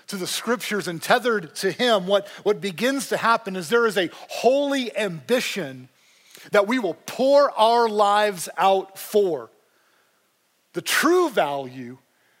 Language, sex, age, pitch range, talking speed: English, male, 40-59, 145-205 Hz, 140 wpm